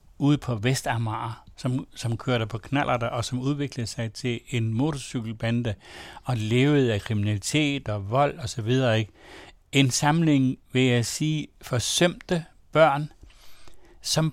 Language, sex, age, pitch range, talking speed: Danish, male, 60-79, 120-145 Hz, 140 wpm